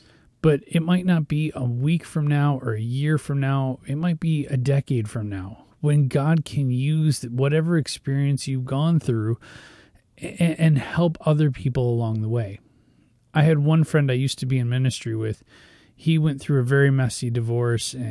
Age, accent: 30-49, American